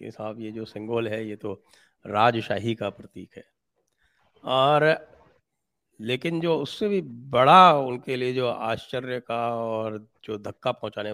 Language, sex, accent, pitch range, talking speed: English, male, Indian, 105-130 Hz, 145 wpm